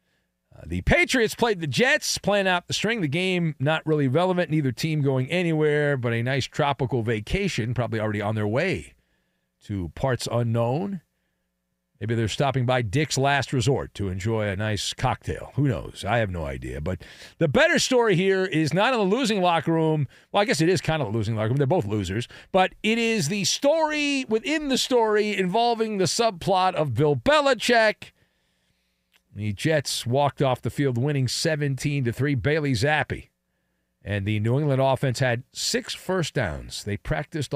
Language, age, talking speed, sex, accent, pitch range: English, 40-59, 175 wpm, male, American, 110-165 Hz